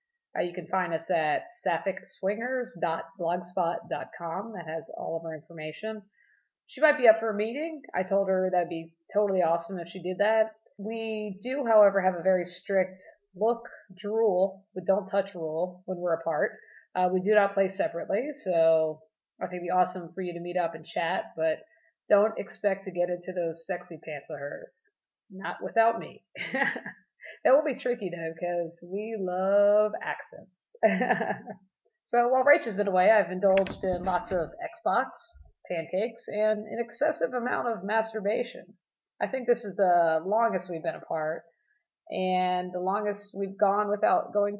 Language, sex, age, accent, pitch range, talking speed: English, female, 30-49, American, 175-220 Hz, 170 wpm